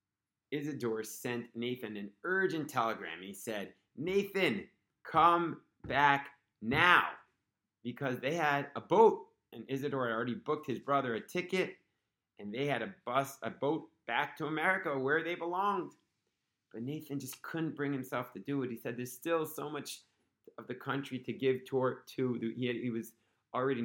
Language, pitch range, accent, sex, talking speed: English, 110-140 Hz, American, male, 165 wpm